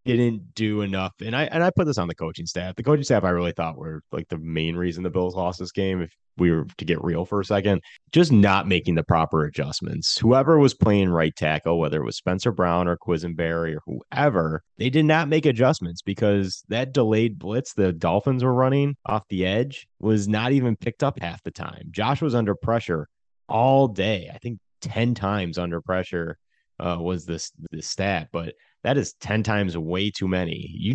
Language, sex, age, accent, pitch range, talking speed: English, male, 30-49, American, 85-110 Hz, 210 wpm